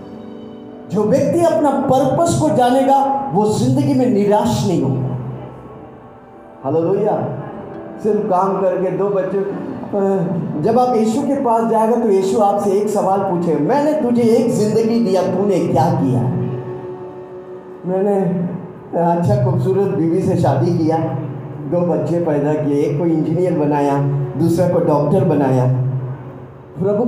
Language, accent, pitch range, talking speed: Hindi, native, 145-215 Hz, 130 wpm